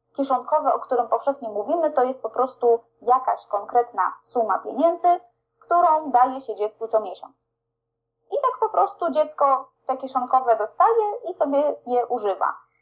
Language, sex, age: Polish, female, 20-39